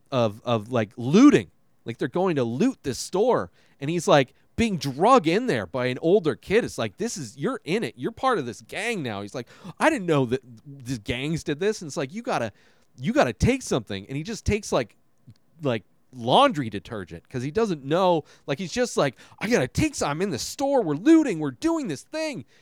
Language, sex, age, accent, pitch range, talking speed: English, male, 30-49, American, 125-190 Hz, 225 wpm